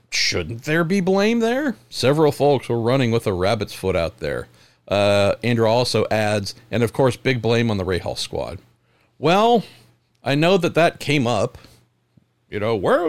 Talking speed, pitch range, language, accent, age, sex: 175 wpm, 120-185 Hz, English, American, 50-69, male